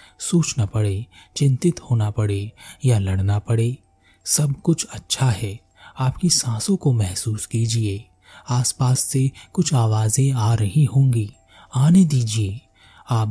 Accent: native